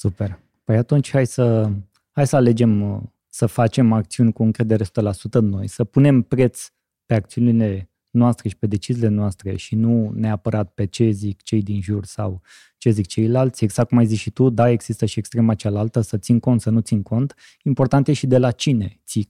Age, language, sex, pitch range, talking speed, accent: 20-39, Romanian, male, 110-125 Hz, 200 wpm, native